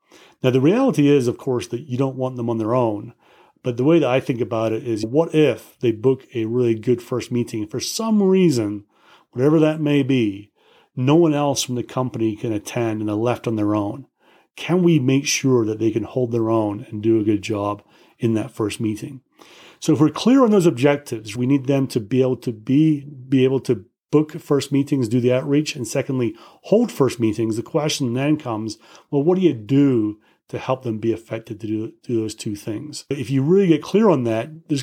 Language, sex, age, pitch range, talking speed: English, male, 40-59, 115-145 Hz, 220 wpm